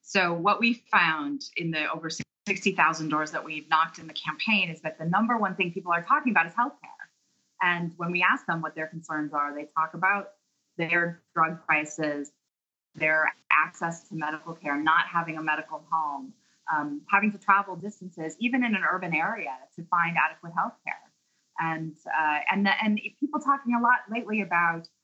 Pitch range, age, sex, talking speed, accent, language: 165-205 Hz, 20-39, female, 190 wpm, American, English